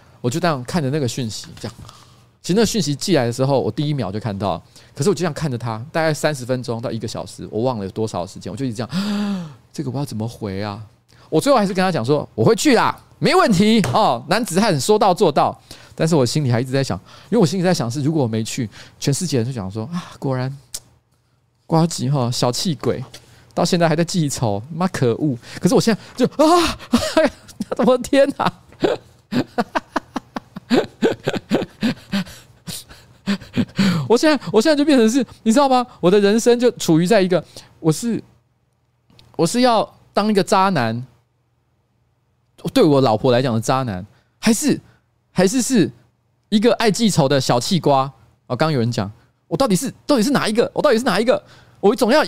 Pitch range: 120-200 Hz